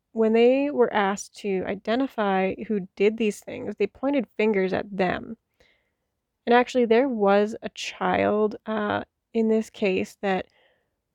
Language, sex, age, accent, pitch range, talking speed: English, female, 20-39, American, 195-230 Hz, 140 wpm